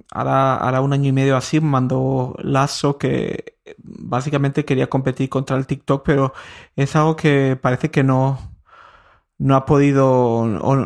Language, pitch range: Spanish, 130-140 Hz